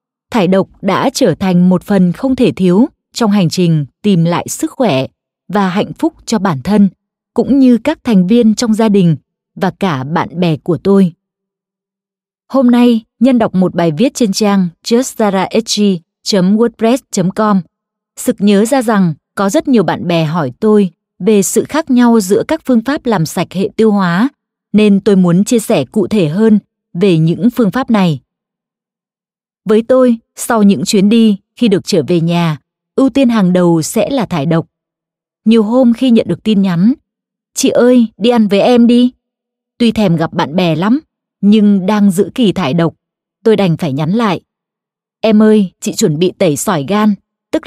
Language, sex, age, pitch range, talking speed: Vietnamese, female, 20-39, 180-230 Hz, 185 wpm